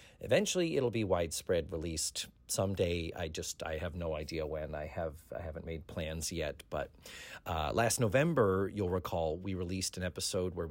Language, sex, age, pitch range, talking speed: English, male, 40-59, 95-150 Hz, 175 wpm